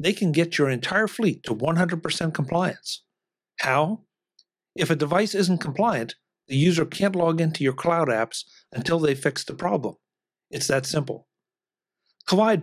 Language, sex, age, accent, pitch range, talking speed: English, male, 50-69, American, 140-175 Hz, 150 wpm